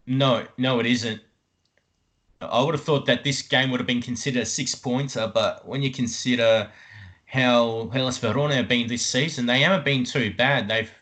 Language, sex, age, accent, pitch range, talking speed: English, male, 20-39, Australian, 105-130 Hz, 185 wpm